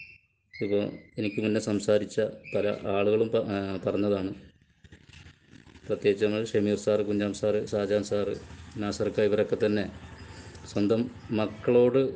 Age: 20-39